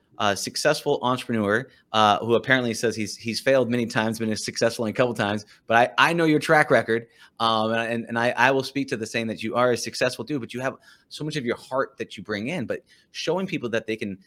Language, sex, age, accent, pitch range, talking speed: English, male, 30-49, American, 105-130 Hz, 255 wpm